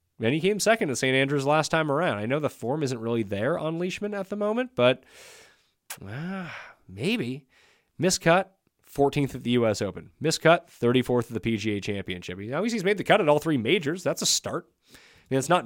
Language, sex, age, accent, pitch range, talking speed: English, male, 30-49, American, 110-170 Hz, 205 wpm